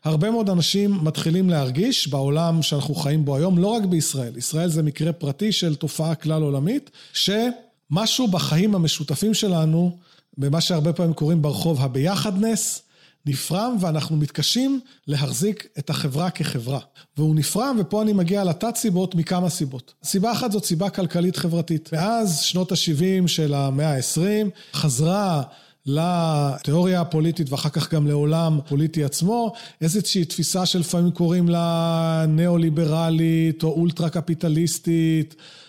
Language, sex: Hebrew, male